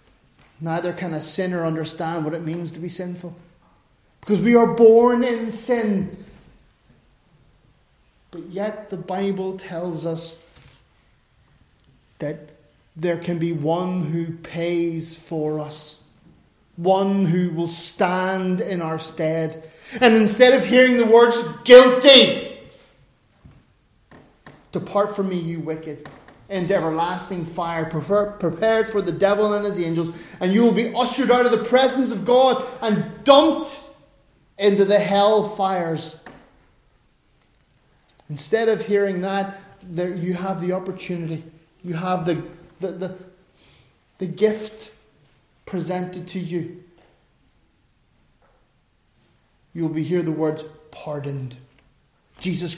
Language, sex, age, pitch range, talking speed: English, male, 30-49, 165-205 Hz, 120 wpm